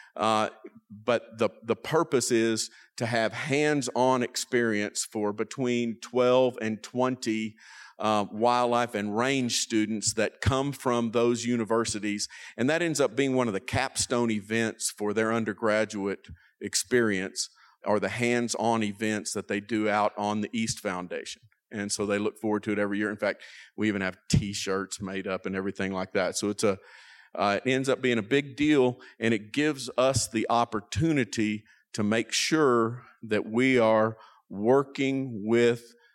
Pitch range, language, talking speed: 105-125 Hz, English, 160 wpm